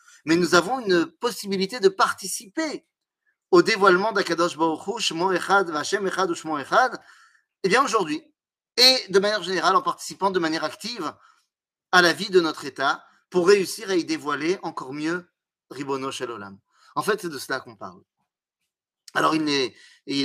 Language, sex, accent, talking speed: French, male, French, 170 wpm